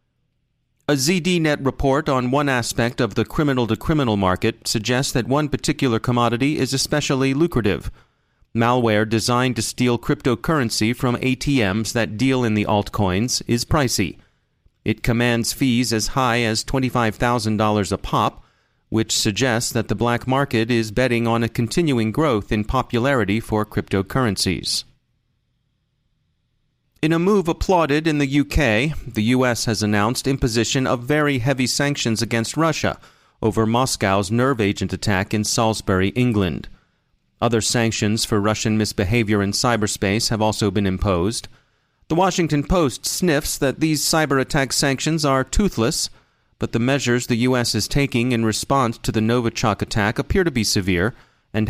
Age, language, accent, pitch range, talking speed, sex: 40-59, English, American, 110-135 Hz, 145 wpm, male